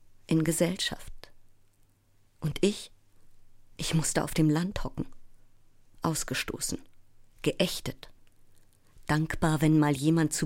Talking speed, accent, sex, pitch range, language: 100 wpm, German, female, 140-175 Hz, German